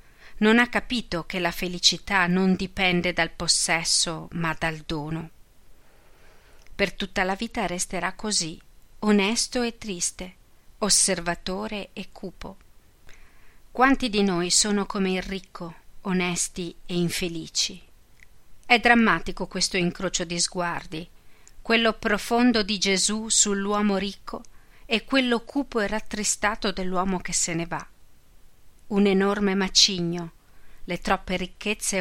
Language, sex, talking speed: Italian, female, 120 wpm